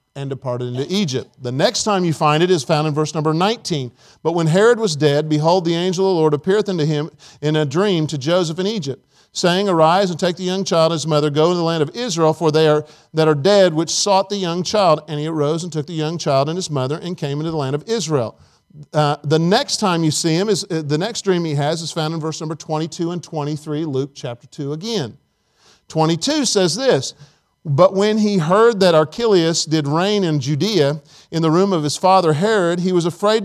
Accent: American